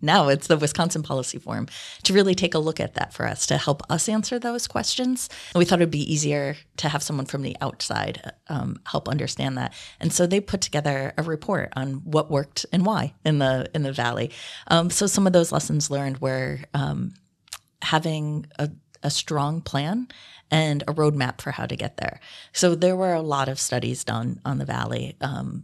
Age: 30-49